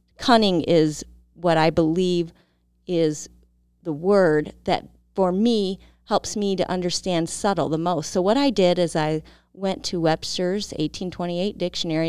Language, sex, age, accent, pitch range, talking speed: English, female, 30-49, American, 145-190 Hz, 145 wpm